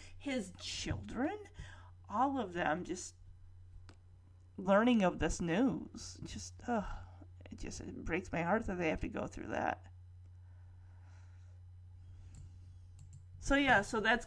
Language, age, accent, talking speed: English, 30-49, American, 120 wpm